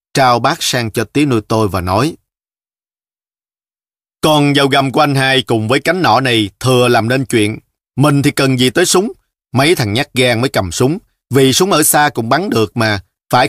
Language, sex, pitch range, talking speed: Vietnamese, male, 115-145 Hz, 205 wpm